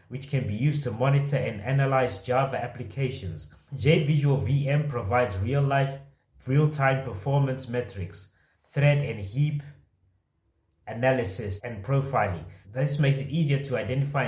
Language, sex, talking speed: English, male, 125 wpm